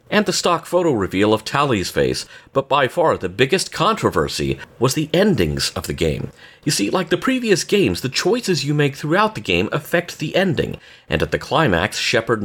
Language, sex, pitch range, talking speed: English, male, 105-155 Hz, 200 wpm